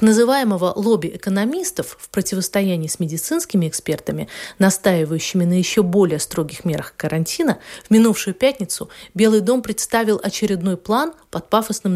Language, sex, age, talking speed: Russian, female, 30-49, 125 wpm